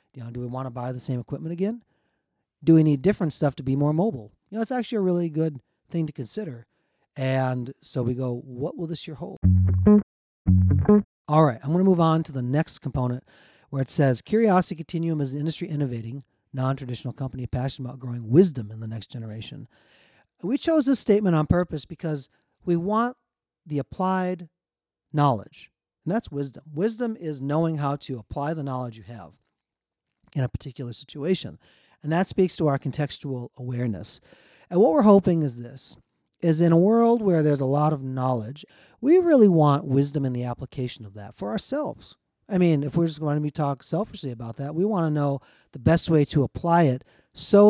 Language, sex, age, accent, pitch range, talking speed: English, male, 40-59, American, 125-170 Hz, 195 wpm